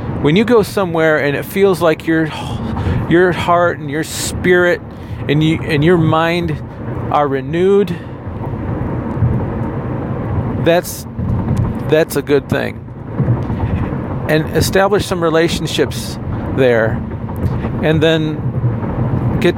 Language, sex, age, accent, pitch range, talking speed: English, male, 40-59, American, 115-155 Hz, 105 wpm